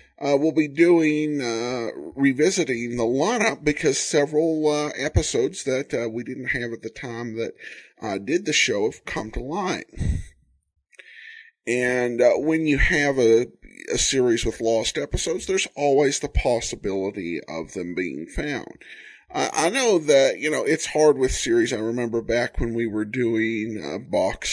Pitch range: 115-150 Hz